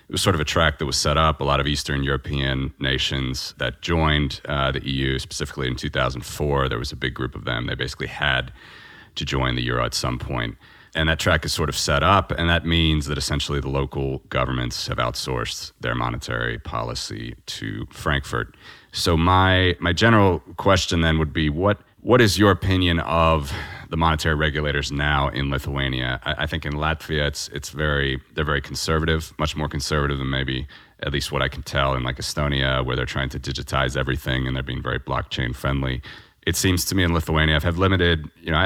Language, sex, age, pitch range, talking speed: English, male, 30-49, 65-85 Hz, 205 wpm